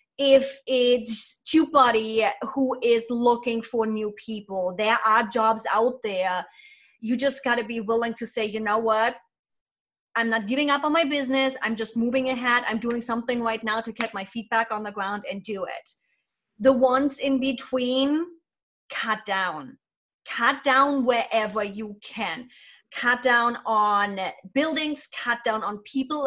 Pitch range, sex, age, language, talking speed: 210-255 Hz, female, 30-49, English, 160 wpm